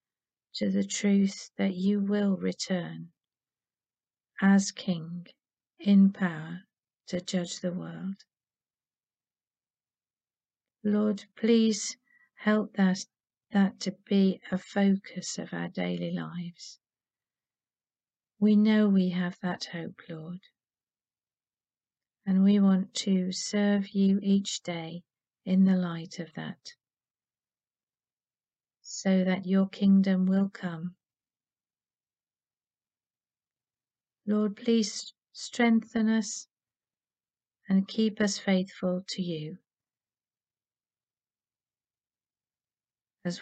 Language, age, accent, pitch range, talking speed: English, 50-69, British, 175-200 Hz, 90 wpm